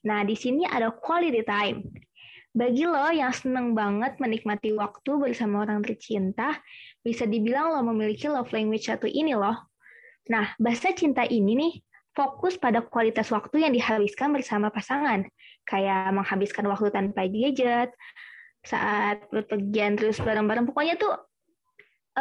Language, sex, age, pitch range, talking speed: Indonesian, female, 20-39, 215-280 Hz, 135 wpm